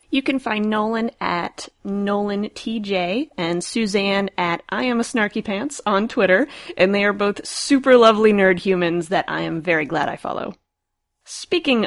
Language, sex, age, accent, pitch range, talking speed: English, female, 30-49, American, 185-230 Hz, 140 wpm